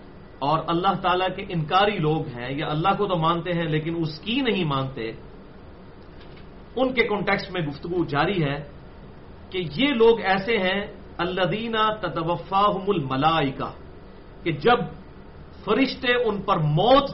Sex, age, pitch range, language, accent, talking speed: male, 40-59, 140-225 Hz, English, Indian, 125 wpm